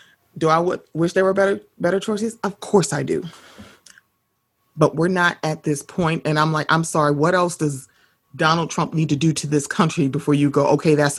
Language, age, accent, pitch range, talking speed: English, 30-49, American, 145-175 Hz, 215 wpm